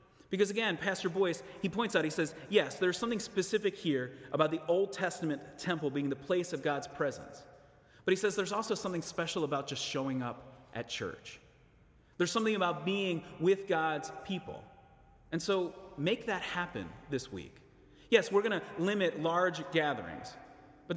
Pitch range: 150-195 Hz